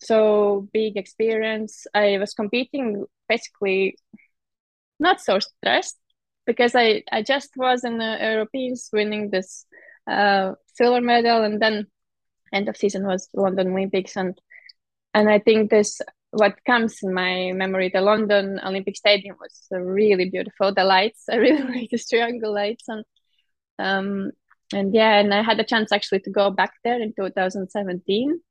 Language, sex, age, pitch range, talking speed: English, female, 20-39, 195-235 Hz, 150 wpm